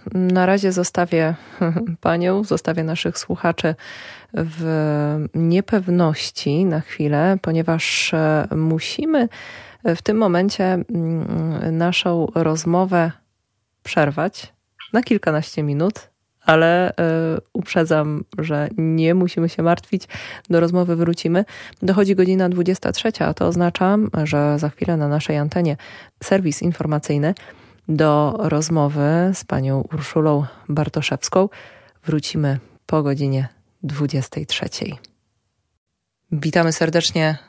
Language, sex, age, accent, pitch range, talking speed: Polish, female, 20-39, native, 145-180 Hz, 95 wpm